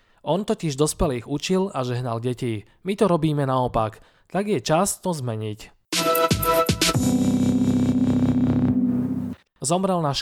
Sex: male